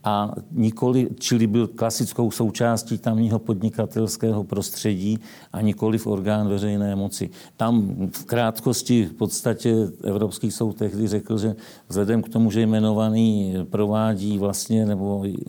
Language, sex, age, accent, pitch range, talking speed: Czech, male, 60-79, native, 105-115 Hz, 130 wpm